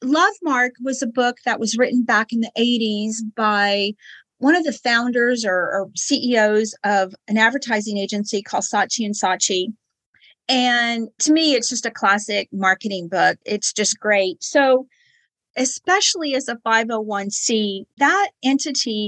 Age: 40-59